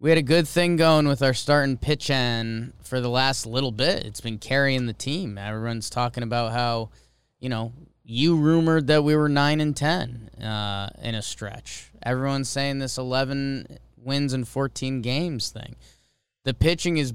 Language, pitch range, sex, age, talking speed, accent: English, 115-140 Hz, male, 20-39, 180 wpm, American